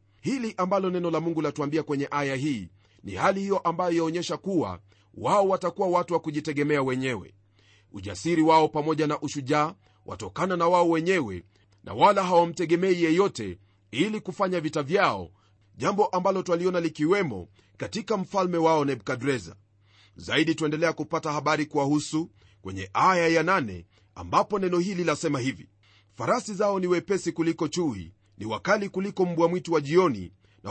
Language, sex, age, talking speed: Swahili, male, 40-59, 145 wpm